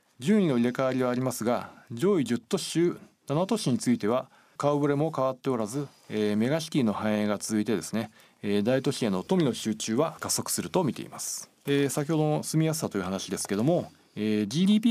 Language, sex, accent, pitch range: Japanese, male, native, 110-155 Hz